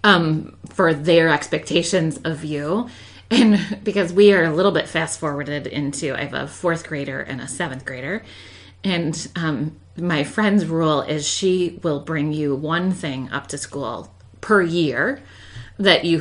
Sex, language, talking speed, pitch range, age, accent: female, English, 165 wpm, 150-200 Hz, 30-49, American